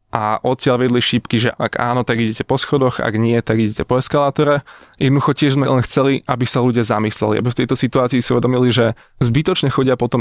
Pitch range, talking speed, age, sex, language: 115-135 Hz, 210 wpm, 20-39, male, Slovak